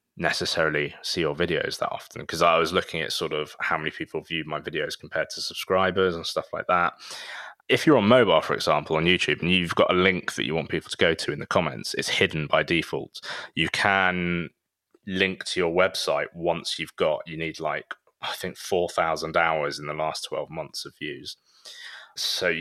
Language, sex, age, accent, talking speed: English, male, 20-39, British, 205 wpm